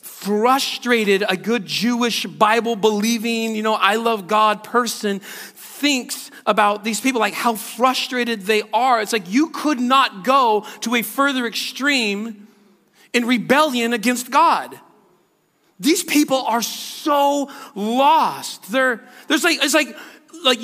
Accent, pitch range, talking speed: American, 195-260 Hz, 135 wpm